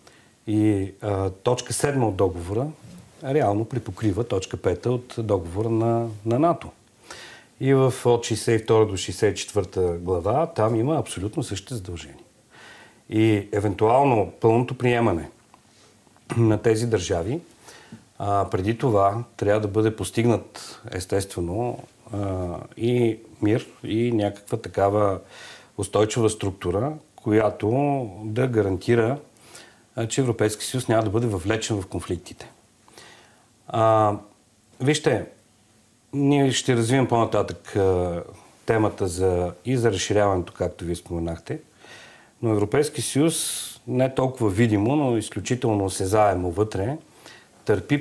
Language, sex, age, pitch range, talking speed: Bulgarian, male, 40-59, 100-120 Hz, 110 wpm